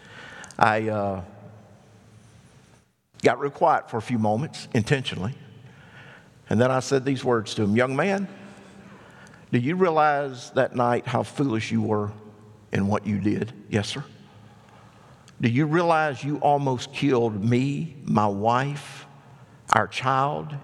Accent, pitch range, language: American, 105-135 Hz, English